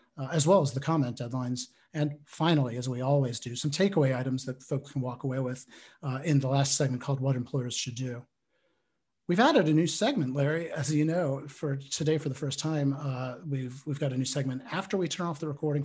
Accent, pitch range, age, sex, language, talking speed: American, 130-150 Hz, 40-59, male, English, 225 wpm